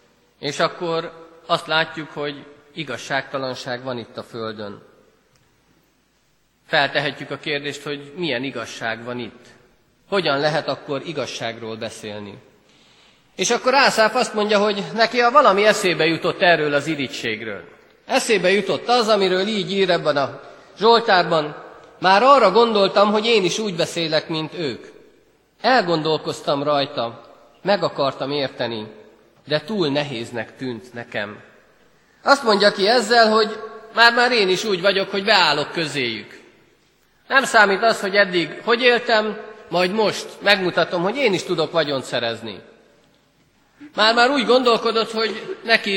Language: Hungarian